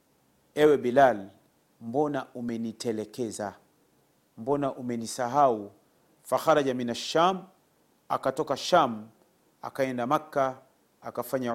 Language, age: Swahili, 40-59